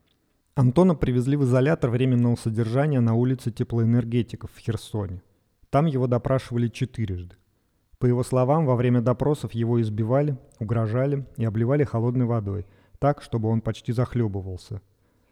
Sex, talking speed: male, 130 wpm